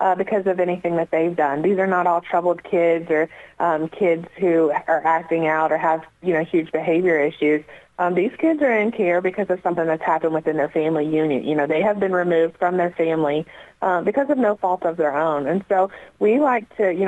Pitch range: 160-185 Hz